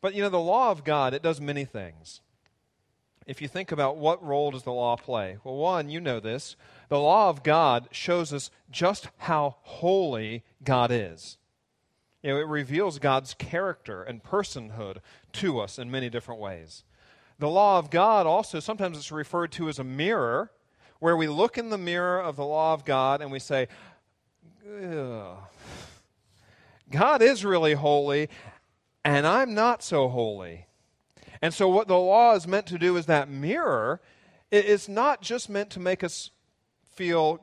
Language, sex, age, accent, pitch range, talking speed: English, male, 40-59, American, 125-180 Hz, 170 wpm